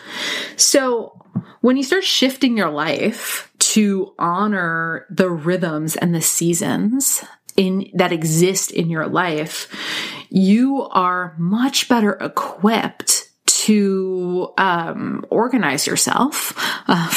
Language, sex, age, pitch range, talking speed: English, female, 30-49, 170-220 Hz, 100 wpm